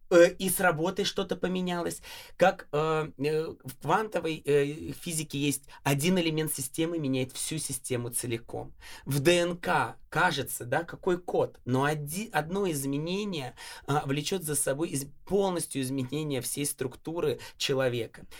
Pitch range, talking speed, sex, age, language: 135-175 Hz, 120 wpm, male, 20-39, Russian